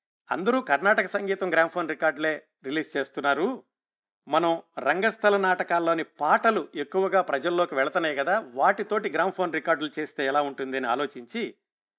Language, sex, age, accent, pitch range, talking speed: Telugu, male, 50-69, native, 145-185 Hz, 125 wpm